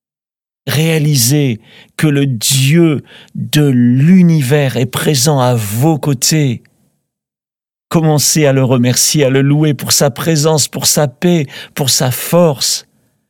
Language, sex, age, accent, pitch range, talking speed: French, male, 50-69, French, 120-145 Hz, 120 wpm